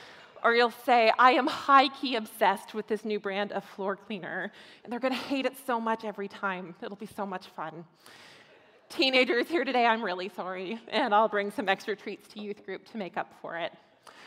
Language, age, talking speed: English, 20-39, 205 wpm